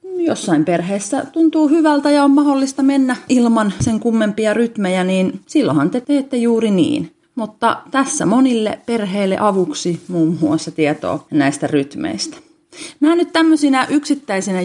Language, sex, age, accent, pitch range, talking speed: Finnish, female, 30-49, native, 170-235 Hz, 130 wpm